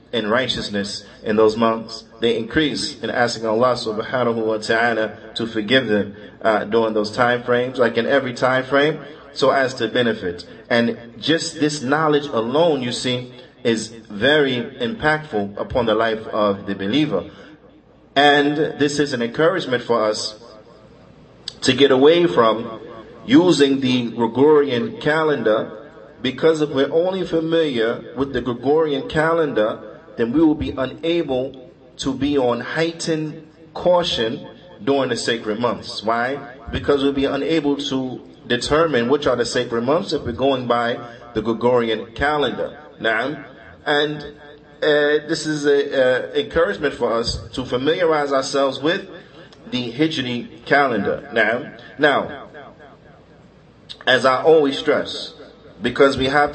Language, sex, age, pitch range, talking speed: English, male, 30-49, 120-150 Hz, 140 wpm